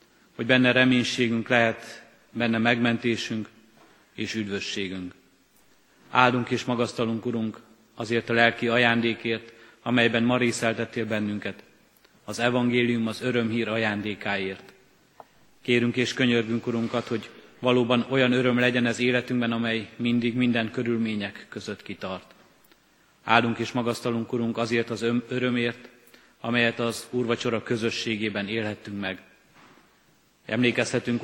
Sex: male